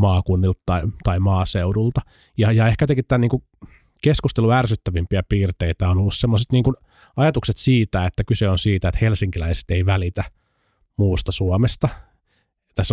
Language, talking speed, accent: Finnish, 140 wpm, native